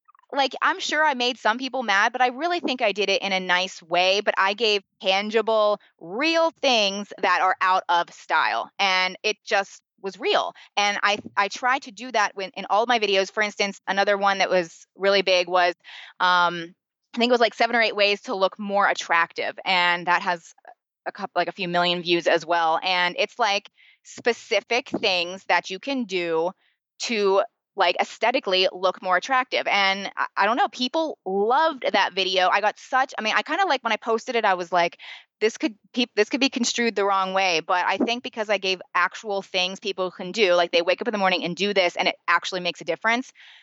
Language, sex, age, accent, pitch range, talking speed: English, female, 20-39, American, 185-240 Hz, 215 wpm